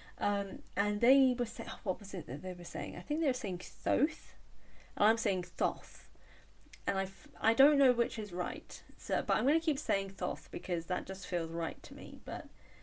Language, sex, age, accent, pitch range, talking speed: English, female, 10-29, British, 175-250 Hz, 225 wpm